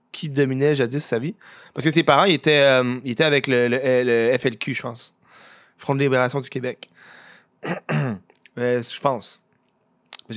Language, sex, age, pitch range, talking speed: French, male, 20-39, 125-160 Hz, 150 wpm